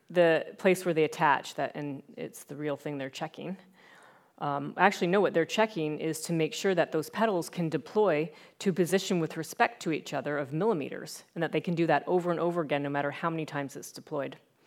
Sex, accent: female, American